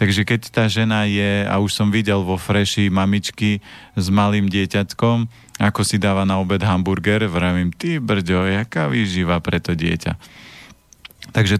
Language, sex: Slovak, male